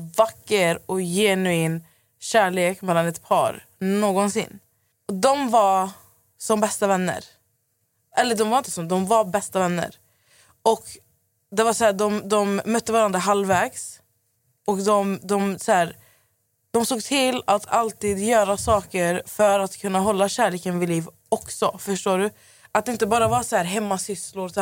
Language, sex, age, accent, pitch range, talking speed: Swedish, female, 20-39, native, 180-220 Hz, 160 wpm